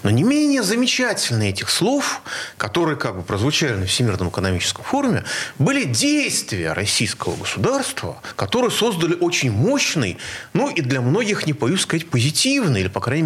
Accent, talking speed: native, 150 wpm